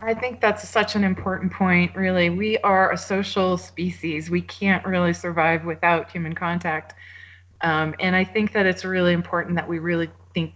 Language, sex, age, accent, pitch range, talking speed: English, female, 20-39, American, 165-195 Hz, 180 wpm